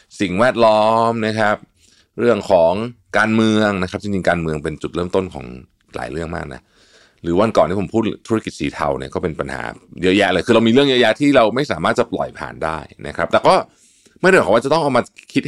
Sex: male